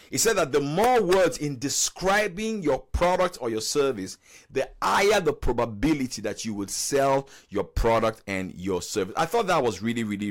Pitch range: 130-200 Hz